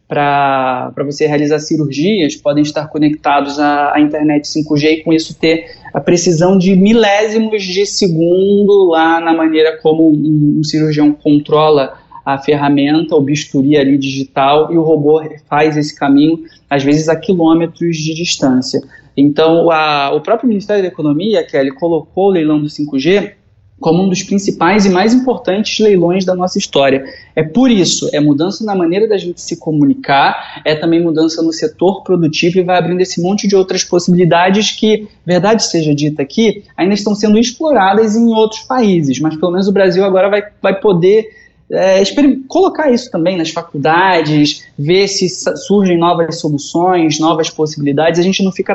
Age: 20-39